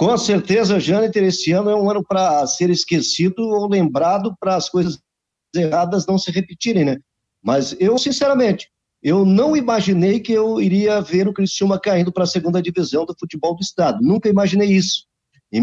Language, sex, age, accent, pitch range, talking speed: Portuguese, male, 50-69, Brazilian, 165-210 Hz, 175 wpm